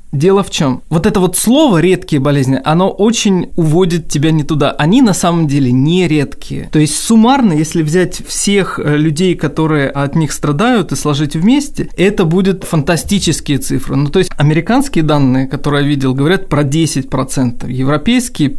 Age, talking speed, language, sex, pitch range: 20-39, 165 wpm, Russian, male, 145-180 Hz